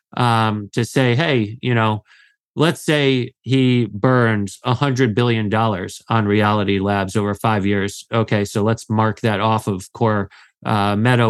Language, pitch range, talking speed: English, 110-135 Hz, 160 wpm